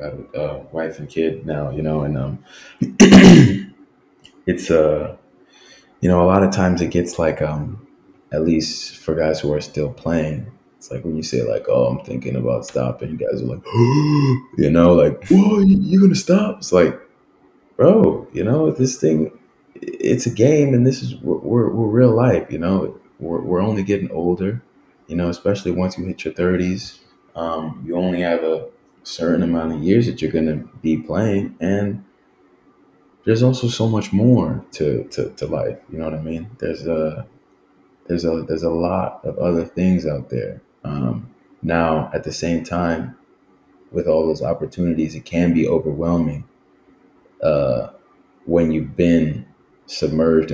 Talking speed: 175 wpm